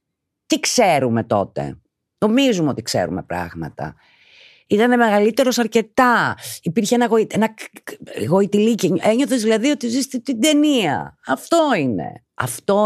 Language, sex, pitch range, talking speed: Greek, female, 115-180 Hz, 110 wpm